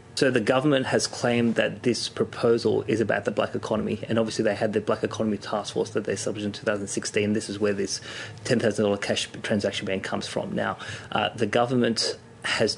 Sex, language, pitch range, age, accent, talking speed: male, English, 105-115 Hz, 30-49, Australian, 195 wpm